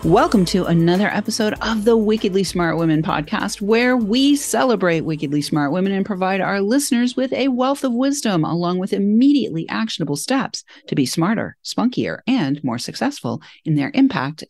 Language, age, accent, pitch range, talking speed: English, 40-59, American, 155-255 Hz, 165 wpm